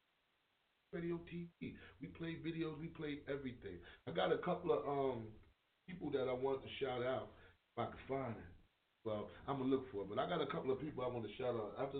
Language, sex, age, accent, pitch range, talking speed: English, male, 30-49, American, 105-125 Hz, 230 wpm